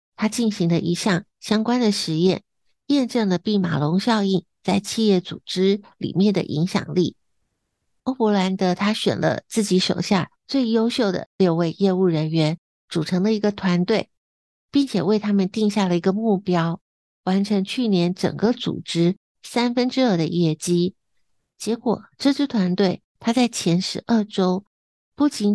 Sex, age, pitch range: female, 60-79, 180-220 Hz